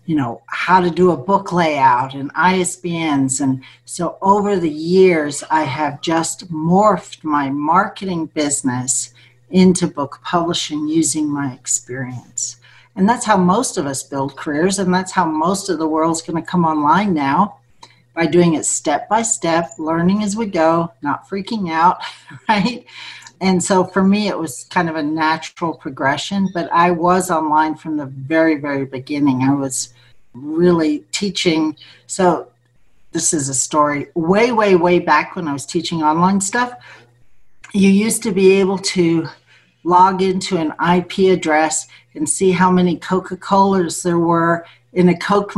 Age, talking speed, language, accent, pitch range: 60-79, 160 wpm, English, American, 150-185 Hz